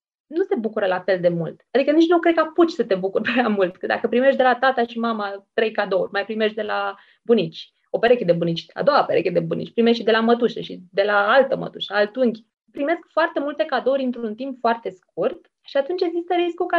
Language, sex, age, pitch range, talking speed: Romanian, female, 20-39, 200-280 Hz, 230 wpm